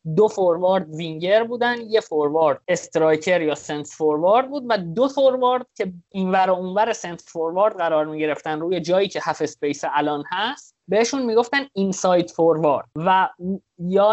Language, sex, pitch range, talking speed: Persian, male, 150-210 Hz, 160 wpm